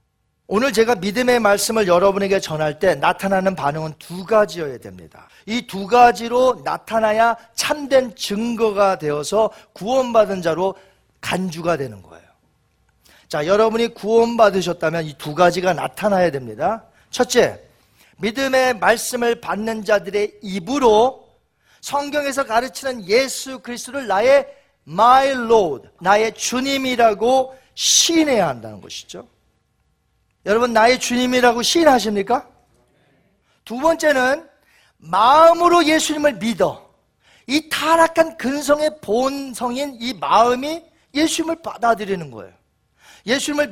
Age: 40-59